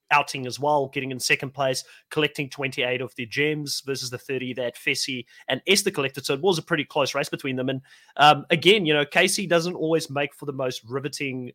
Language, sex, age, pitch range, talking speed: English, male, 30-49, 135-160 Hz, 220 wpm